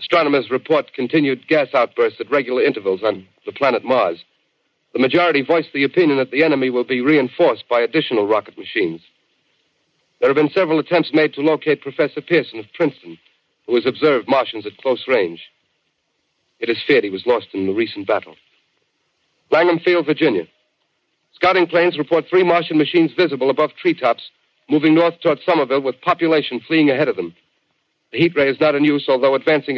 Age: 50-69